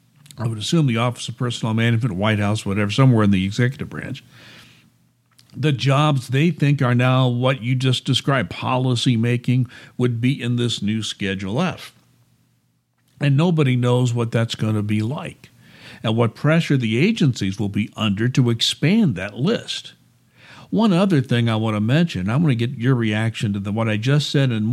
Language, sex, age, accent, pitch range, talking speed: English, male, 60-79, American, 110-140 Hz, 185 wpm